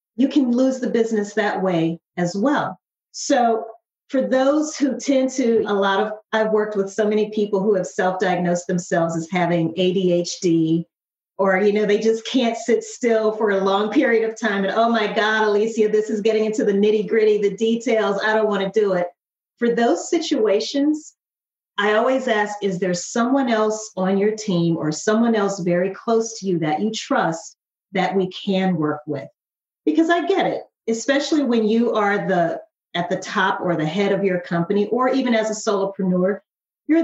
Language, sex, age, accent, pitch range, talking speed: English, female, 40-59, American, 185-230 Hz, 190 wpm